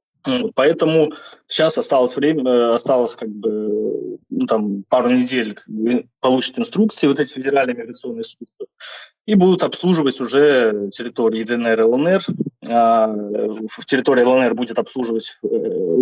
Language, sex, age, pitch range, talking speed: Russian, male, 20-39, 120-180 Hz, 120 wpm